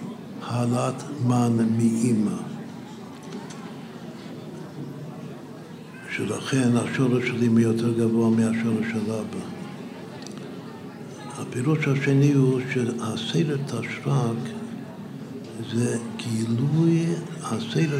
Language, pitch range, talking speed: Hebrew, 115-140 Hz, 65 wpm